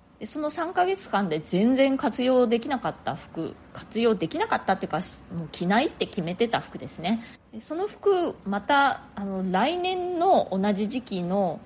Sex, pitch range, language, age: female, 180-255 Hz, Japanese, 30-49